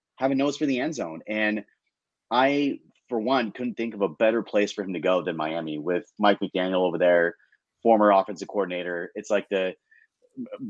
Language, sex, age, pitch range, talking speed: English, male, 30-49, 100-115 Hz, 195 wpm